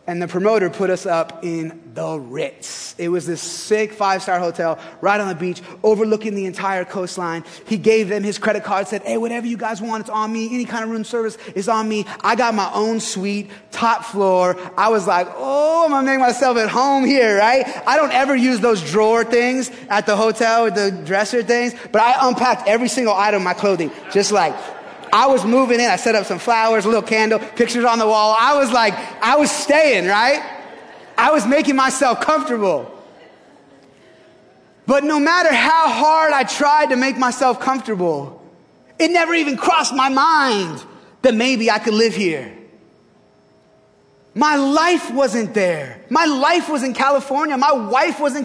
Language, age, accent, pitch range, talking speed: English, 20-39, American, 205-275 Hz, 190 wpm